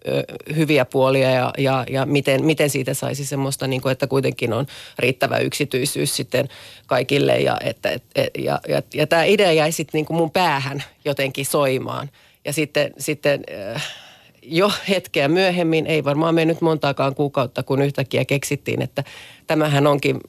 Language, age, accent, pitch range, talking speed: Finnish, 30-49, native, 140-155 Hz, 130 wpm